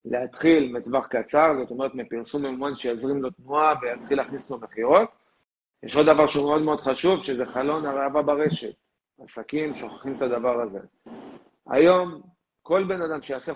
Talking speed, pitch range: 155 wpm, 135-175 Hz